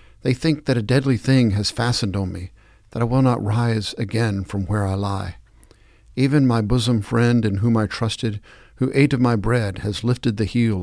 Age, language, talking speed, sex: 60-79, English, 205 wpm, male